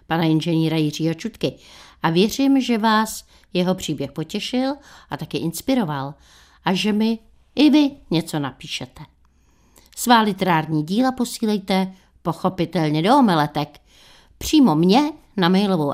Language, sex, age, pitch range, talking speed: Czech, female, 60-79, 160-225 Hz, 120 wpm